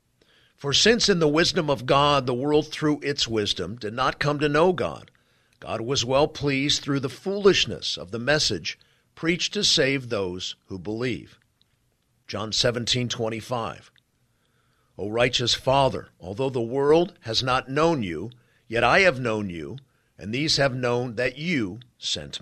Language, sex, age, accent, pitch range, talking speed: English, male, 50-69, American, 115-150 Hz, 165 wpm